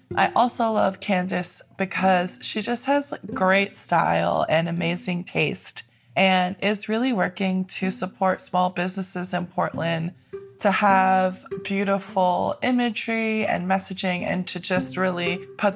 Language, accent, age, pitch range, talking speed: English, American, 20-39, 185-220 Hz, 130 wpm